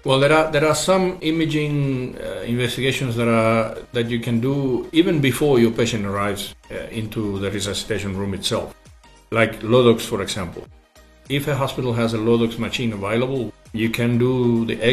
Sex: male